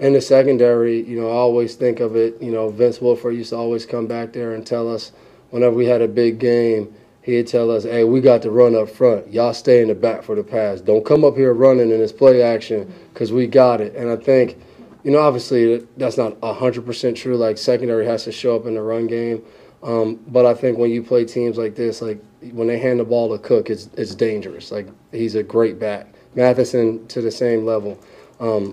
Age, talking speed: 20-39, 235 wpm